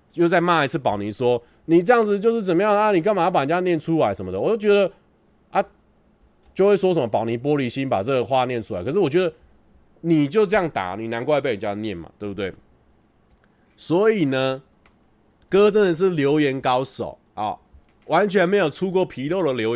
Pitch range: 110-165 Hz